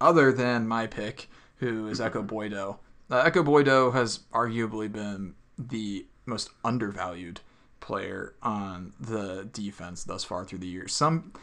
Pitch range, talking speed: 105-125 Hz, 140 wpm